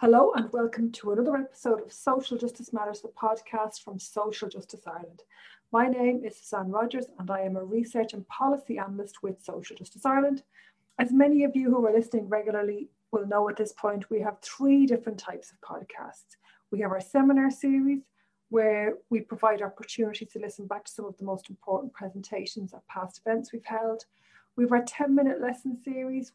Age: 30-49